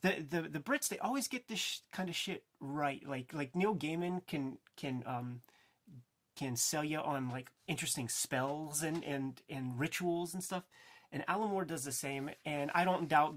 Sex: male